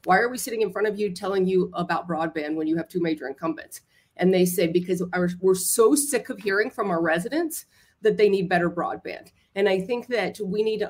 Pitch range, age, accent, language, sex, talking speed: 170-210 Hz, 30-49, American, English, female, 230 wpm